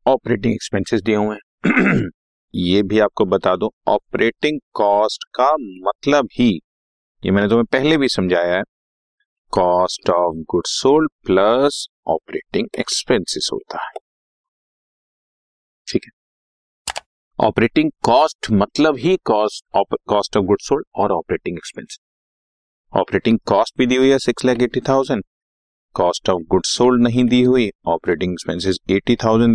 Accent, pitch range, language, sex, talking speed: native, 95-140 Hz, Hindi, male, 120 wpm